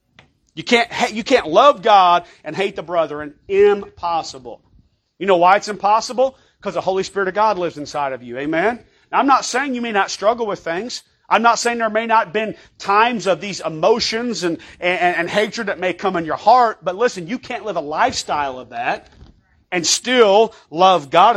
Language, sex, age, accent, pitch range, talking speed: English, male, 40-59, American, 185-250 Hz, 205 wpm